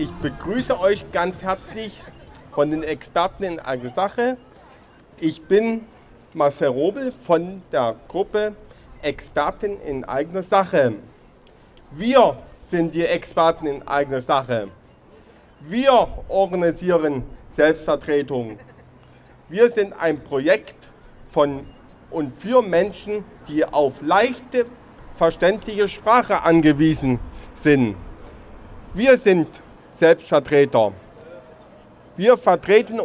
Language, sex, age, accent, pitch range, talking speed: German, male, 50-69, German, 145-210 Hz, 95 wpm